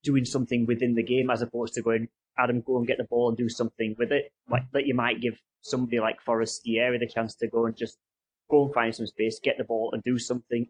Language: English